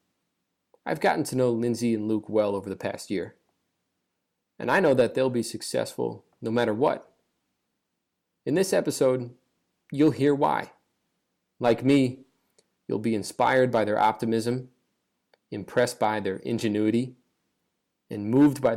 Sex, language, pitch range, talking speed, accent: male, English, 105-125 Hz, 140 wpm, American